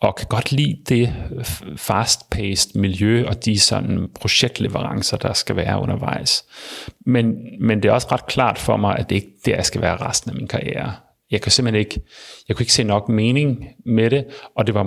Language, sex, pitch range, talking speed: Danish, male, 100-120 Hz, 205 wpm